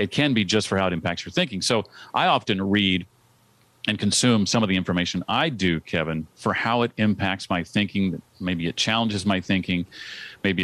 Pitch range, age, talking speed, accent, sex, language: 90-110 Hz, 40-59, 195 wpm, American, male, English